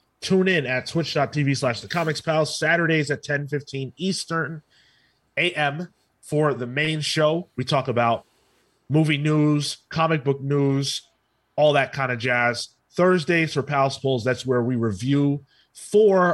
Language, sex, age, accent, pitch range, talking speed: English, male, 30-49, American, 125-160 Hz, 135 wpm